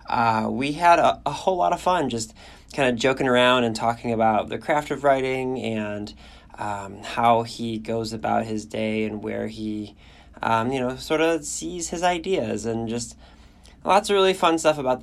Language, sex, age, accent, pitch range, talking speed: English, male, 20-39, American, 110-135 Hz, 190 wpm